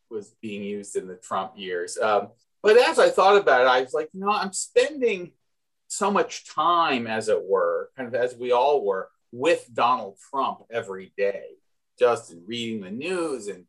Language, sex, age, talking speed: English, male, 40-59, 190 wpm